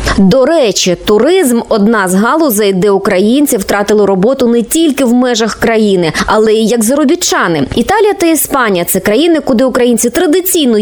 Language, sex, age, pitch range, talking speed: Ukrainian, female, 20-39, 210-290 Hz, 160 wpm